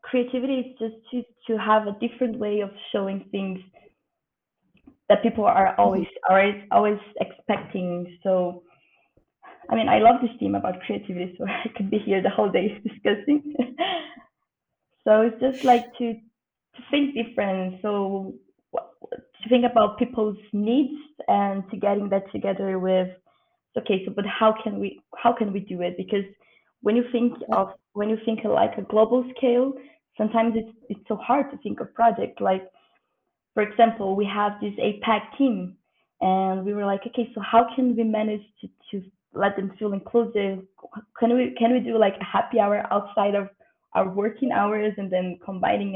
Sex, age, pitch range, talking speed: female, 20-39, 195-240 Hz, 170 wpm